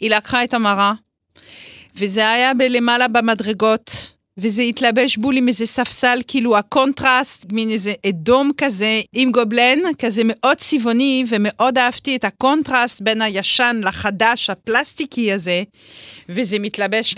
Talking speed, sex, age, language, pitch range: 125 wpm, female, 40-59, Hebrew, 200-255 Hz